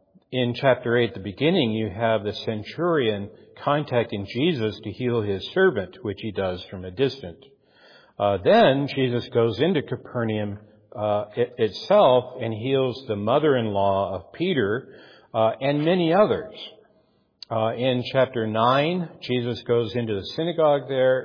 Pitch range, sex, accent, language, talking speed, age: 105-135 Hz, male, American, English, 140 wpm, 60-79